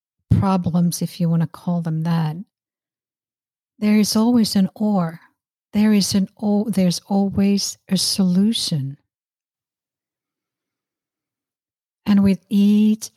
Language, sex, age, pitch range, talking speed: English, female, 60-79, 170-205 Hz, 110 wpm